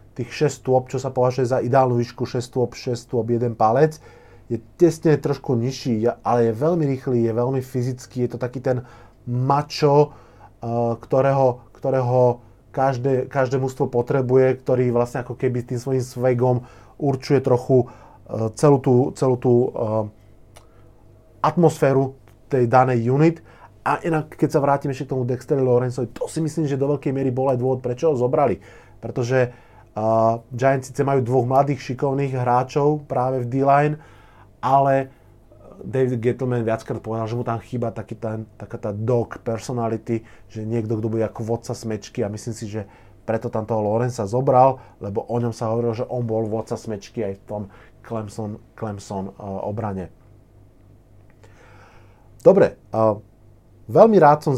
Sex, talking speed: male, 155 wpm